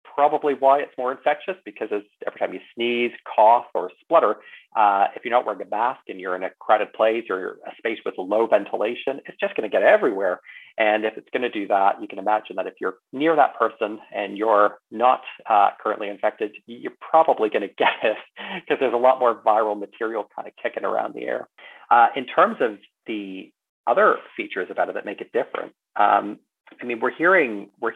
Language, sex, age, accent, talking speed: English, male, 40-59, American, 210 wpm